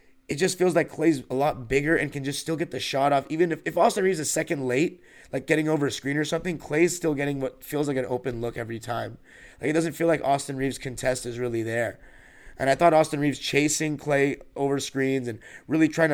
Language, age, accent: English, 20-39, American